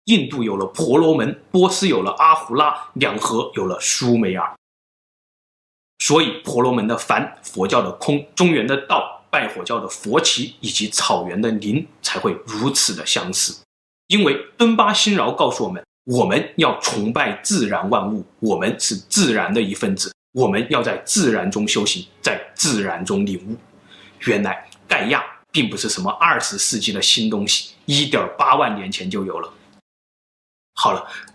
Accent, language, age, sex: native, Chinese, 30-49, male